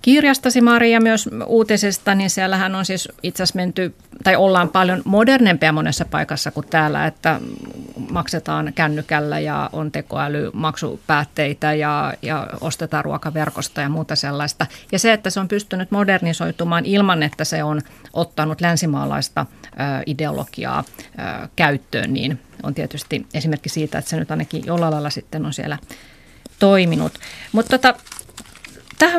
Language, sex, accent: Finnish, female, native